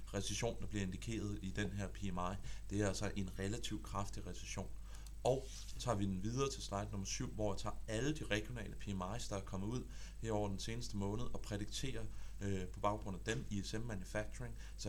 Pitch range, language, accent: 100-115 Hz, Danish, native